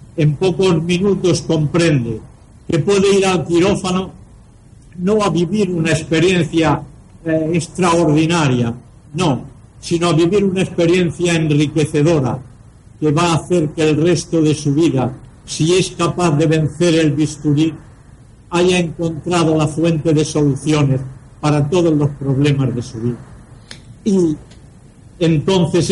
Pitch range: 130-170 Hz